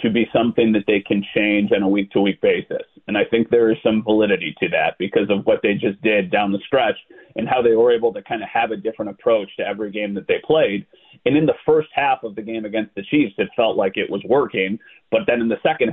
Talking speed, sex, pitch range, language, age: 260 wpm, male, 110-150 Hz, English, 30-49